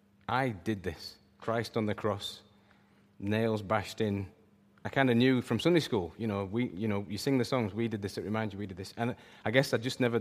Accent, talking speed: British, 240 wpm